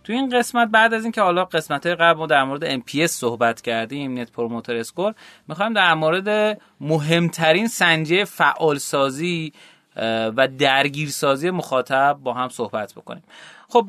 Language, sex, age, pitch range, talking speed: Persian, male, 30-49, 135-210 Hz, 145 wpm